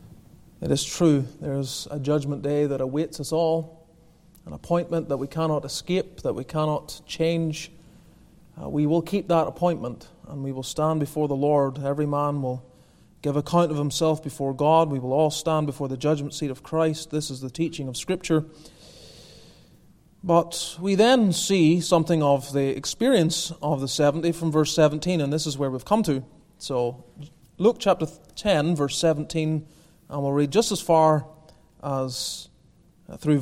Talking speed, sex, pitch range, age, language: 170 wpm, male, 140-170 Hz, 30-49, English